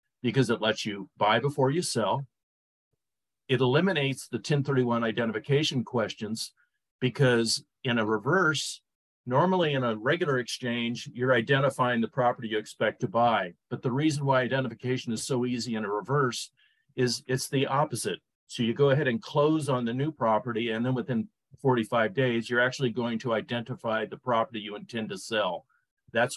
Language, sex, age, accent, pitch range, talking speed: English, male, 50-69, American, 115-135 Hz, 165 wpm